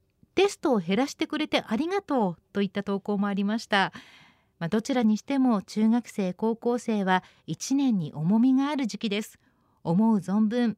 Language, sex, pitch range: Japanese, female, 200-285 Hz